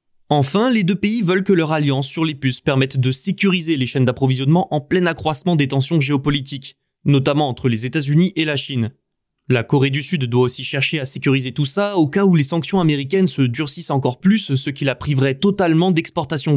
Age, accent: 20-39, French